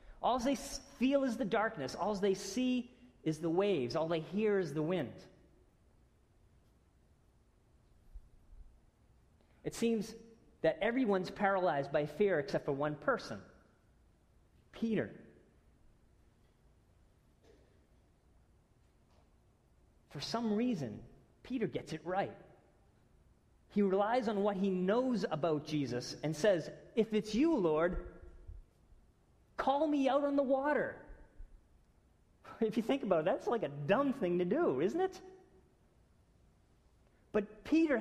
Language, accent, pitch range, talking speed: English, American, 150-225 Hz, 115 wpm